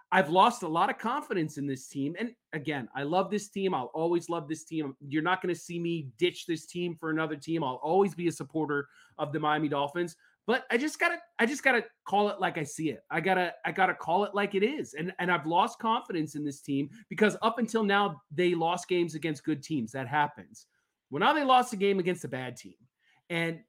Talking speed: 245 wpm